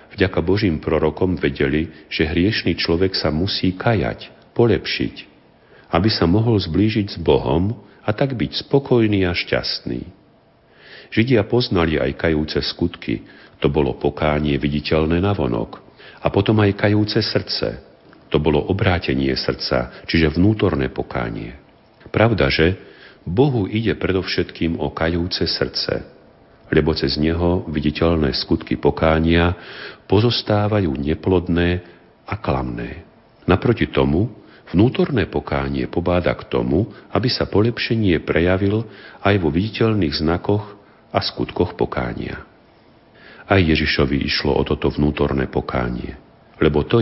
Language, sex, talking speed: Slovak, male, 115 wpm